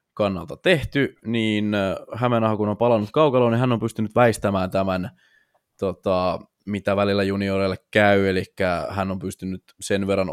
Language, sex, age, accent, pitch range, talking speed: Finnish, male, 20-39, native, 95-115 Hz, 145 wpm